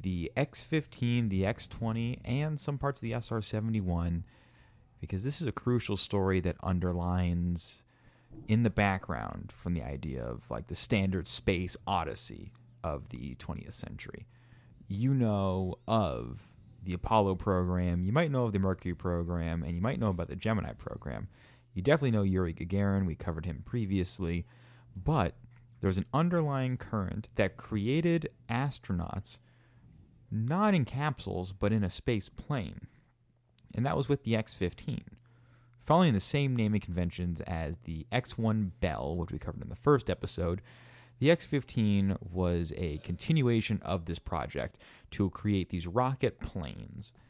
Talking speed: 145 wpm